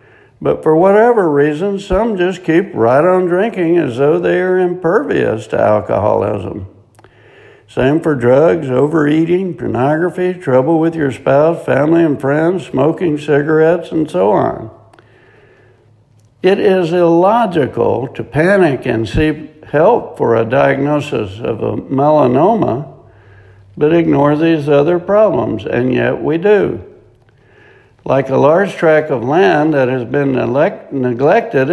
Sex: male